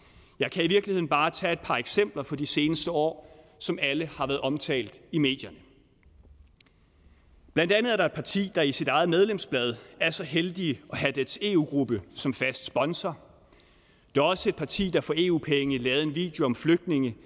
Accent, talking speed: native, 190 wpm